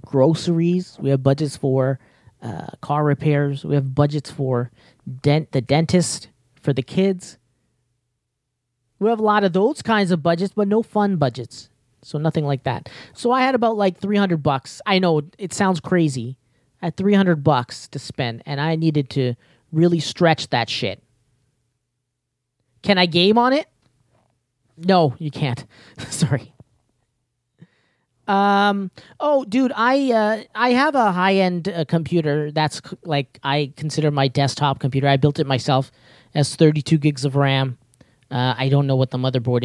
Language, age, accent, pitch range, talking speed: English, 30-49, American, 130-170 Hz, 160 wpm